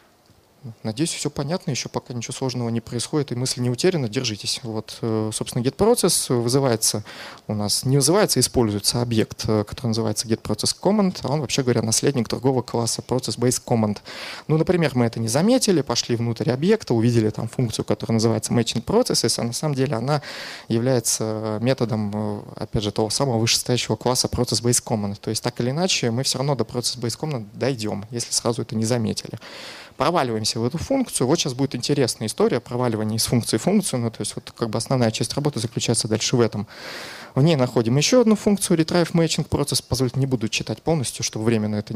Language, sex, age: Russian, male, 20-39